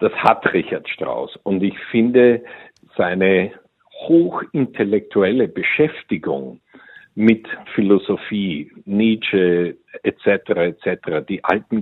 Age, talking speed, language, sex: 50-69, 85 wpm, German, male